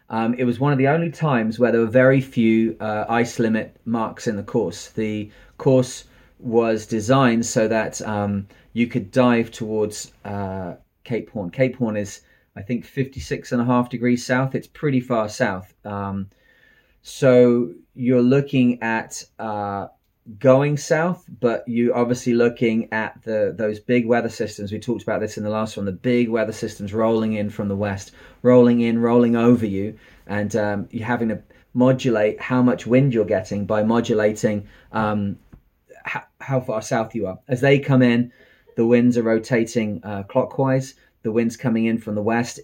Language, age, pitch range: English, 30-49, 110-125 Hz